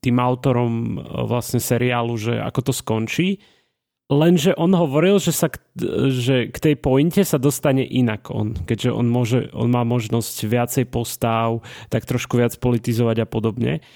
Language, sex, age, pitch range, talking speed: Slovak, male, 30-49, 120-160 Hz, 155 wpm